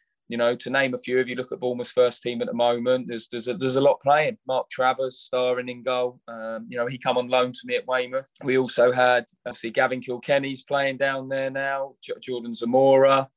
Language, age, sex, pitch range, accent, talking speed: English, 20-39, male, 125-135 Hz, British, 235 wpm